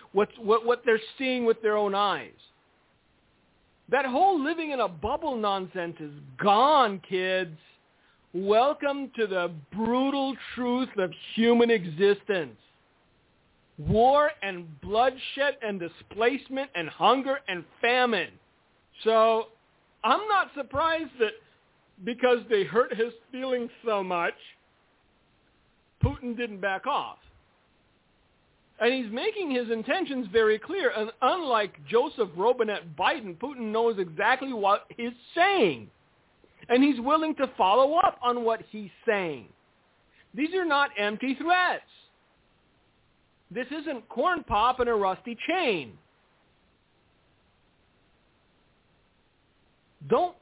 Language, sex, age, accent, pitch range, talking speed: English, male, 50-69, American, 200-270 Hz, 110 wpm